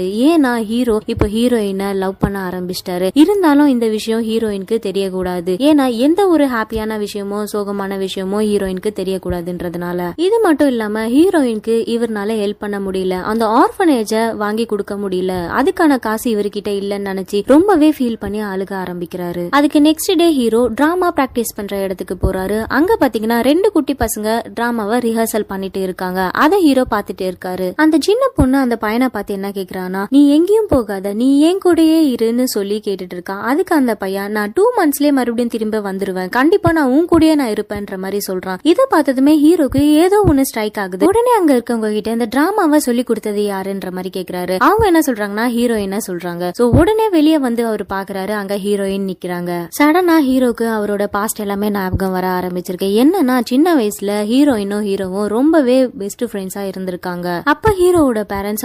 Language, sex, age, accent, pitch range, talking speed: Tamil, female, 20-39, native, 195-280 Hz, 70 wpm